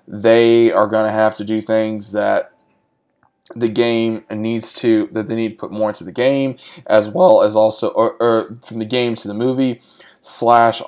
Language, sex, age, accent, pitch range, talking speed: English, male, 20-39, American, 105-115 Hz, 195 wpm